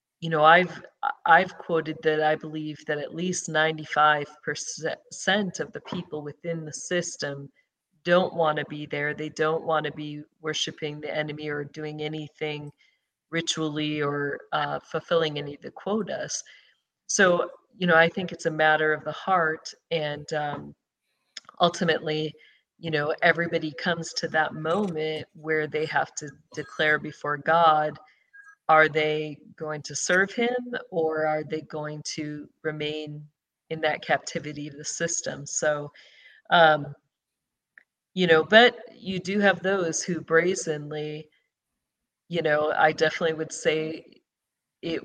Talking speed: 140 wpm